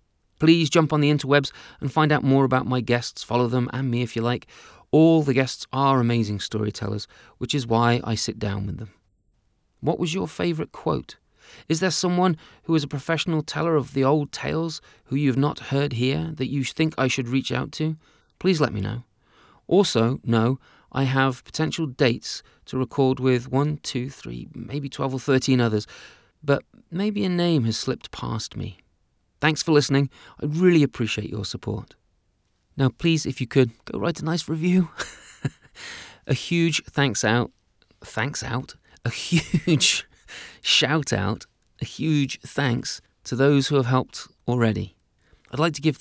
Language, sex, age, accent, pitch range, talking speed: English, male, 30-49, British, 115-145 Hz, 175 wpm